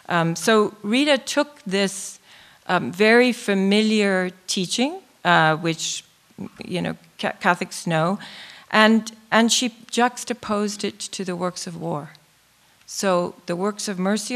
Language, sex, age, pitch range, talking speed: English, female, 40-59, 165-200 Hz, 125 wpm